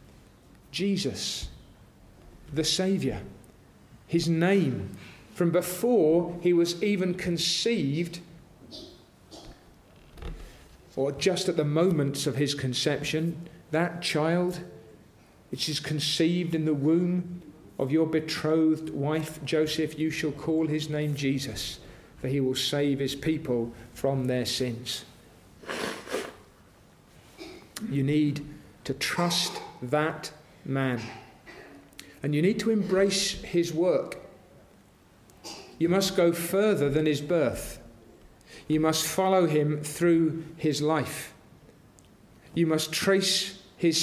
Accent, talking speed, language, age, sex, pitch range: British, 105 wpm, English, 40-59, male, 135-170 Hz